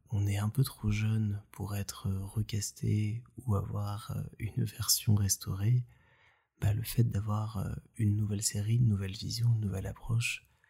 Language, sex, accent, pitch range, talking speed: French, male, French, 100-120 Hz, 150 wpm